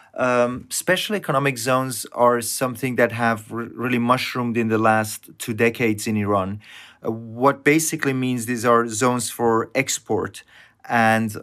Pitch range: 110-130 Hz